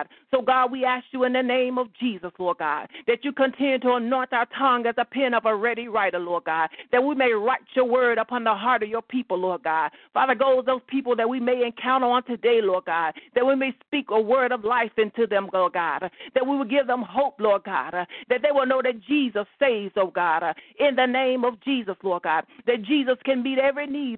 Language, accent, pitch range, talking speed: English, American, 205-260 Hz, 240 wpm